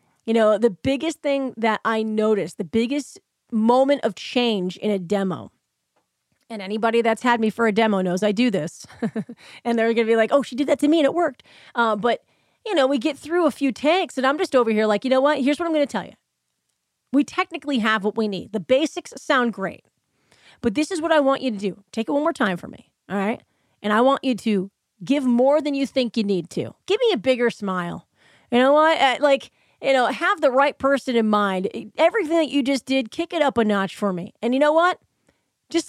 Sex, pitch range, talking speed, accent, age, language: female, 215-285 Hz, 240 wpm, American, 30-49, English